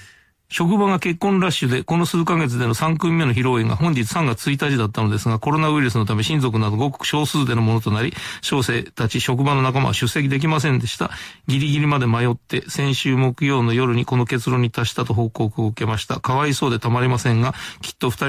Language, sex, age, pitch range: Japanese, male, 40-59, 115-145 Hz